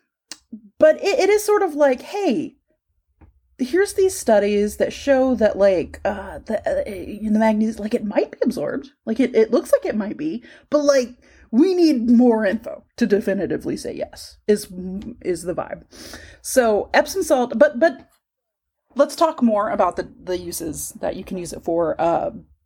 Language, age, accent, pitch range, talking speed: English, 30-49, American, 200-290 Hz, 175 wpm